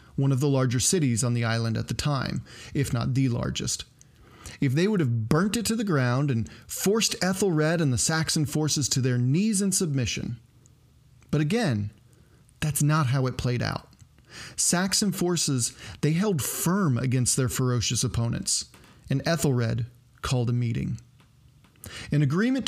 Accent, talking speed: American, 160 wpm